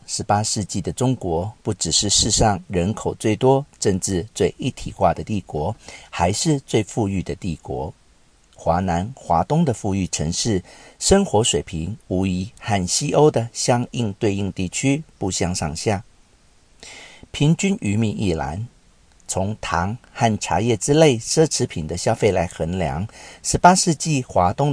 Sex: male